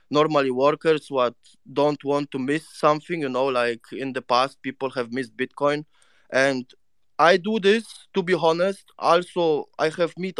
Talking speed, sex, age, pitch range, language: 165 wpm, male, 20-39, 130-165 Hz, English